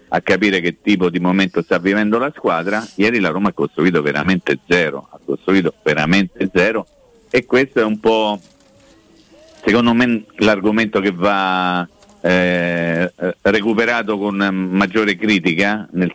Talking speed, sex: 140 wpm, male